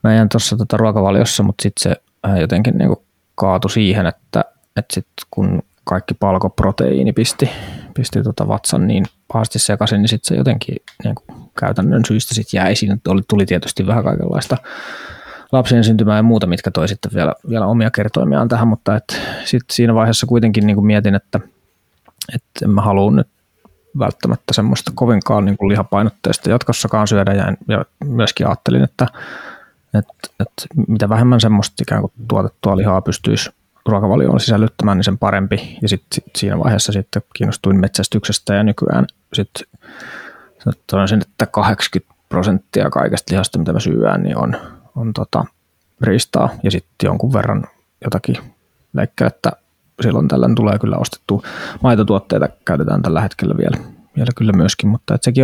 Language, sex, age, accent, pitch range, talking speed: Finnish, male, 20-39, native, 100-115 Hz, 145 wpm